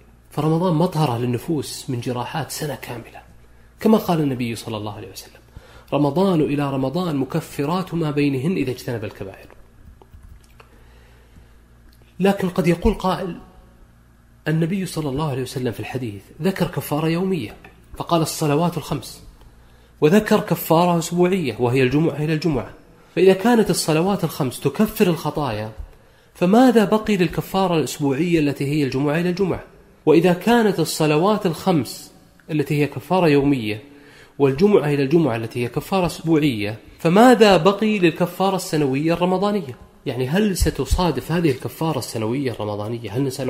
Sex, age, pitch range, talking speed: male, 30-49, 120-175 Hz, 125 wpm